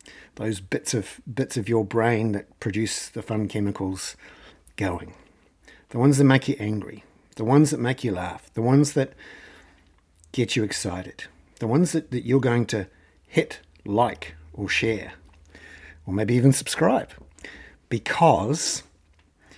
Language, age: English, 50-69